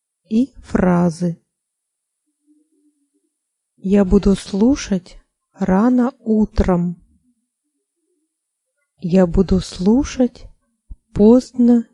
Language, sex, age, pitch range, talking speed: Russian, female, 30-49, 190-240 Hz, 55 wpm